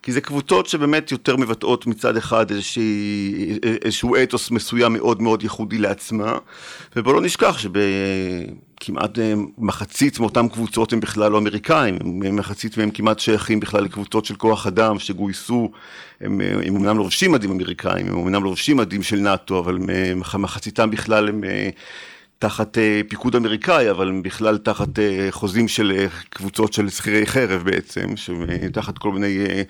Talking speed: 135 wpm